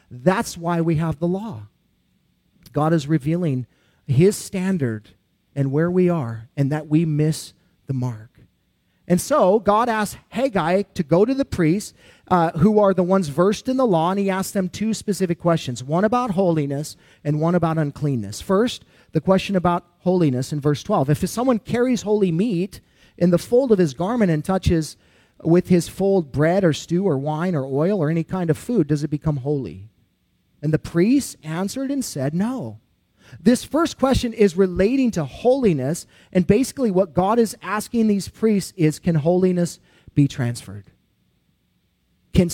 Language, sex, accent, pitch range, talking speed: English, male, American, 155-205 Hz, 170 wpm